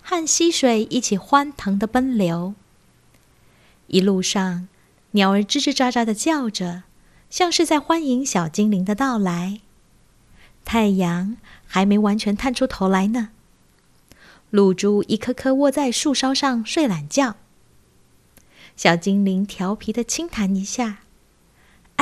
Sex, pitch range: female, 185-245 Hz